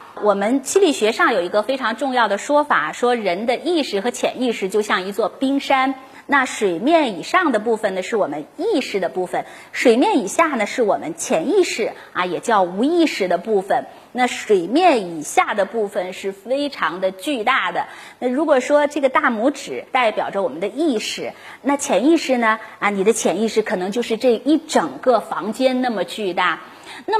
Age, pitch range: 30-49, 205-305 Hz